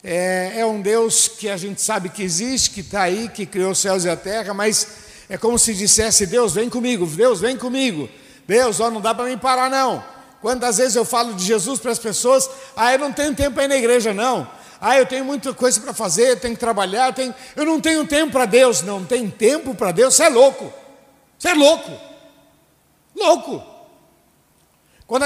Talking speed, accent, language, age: 215 wpm, Brazilian, Portuguese, 60-79